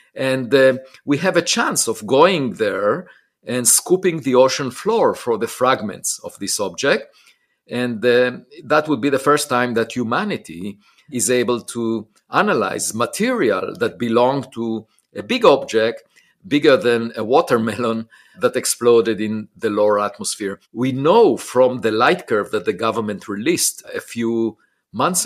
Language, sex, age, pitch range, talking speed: English, male, 50-69, 110-135 Hz, 150 wpm